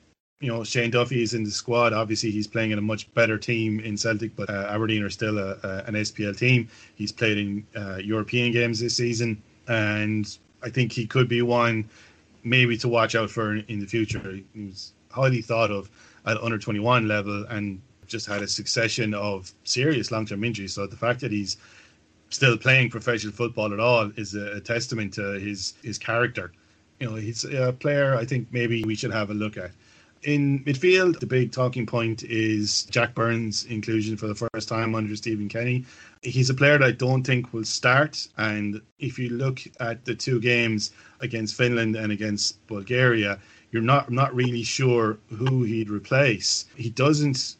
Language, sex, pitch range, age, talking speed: English, male, 105-120 Hz, 30-49, 195 wpm